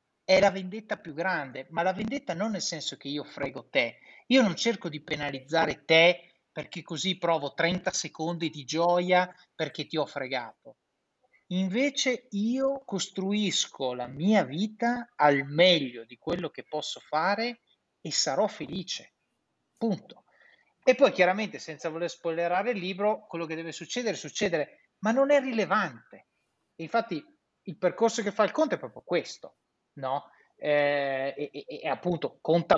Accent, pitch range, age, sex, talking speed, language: native, 150-220 Hz, 30-49, male, 150 wpm, Italian